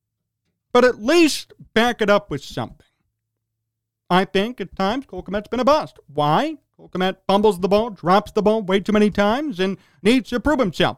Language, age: English, 40-59